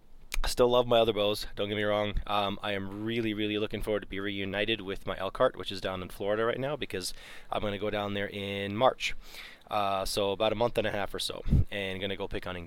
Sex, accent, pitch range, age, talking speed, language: male, American, 100-115 Hz, 20-39, 255 wpm, English